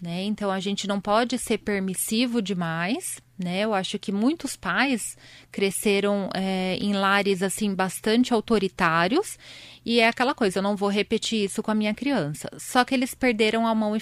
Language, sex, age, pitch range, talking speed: Spanish, female, 20-39, 195-250 Hz, 175 wpm